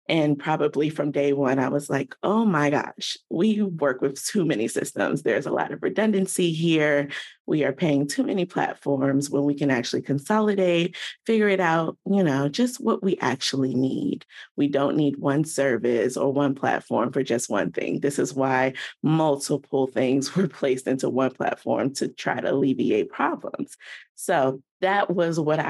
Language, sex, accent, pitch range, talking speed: English, female, American, 140-170 Hz, 175 wpm